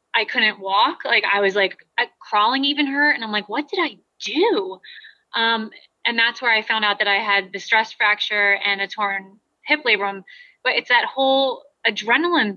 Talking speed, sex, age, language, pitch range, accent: 190 wpm, female, 20-39, English, 205-260 Hz, American